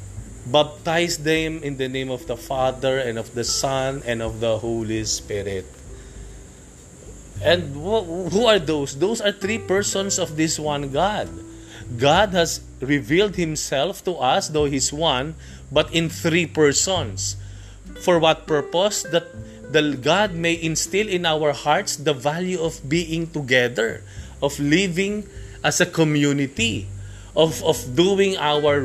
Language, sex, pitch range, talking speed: English, male, 125-180 Hz, 140 wpm